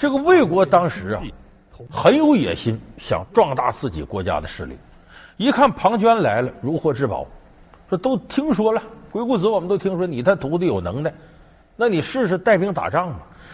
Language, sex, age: Chinese, male, 50-69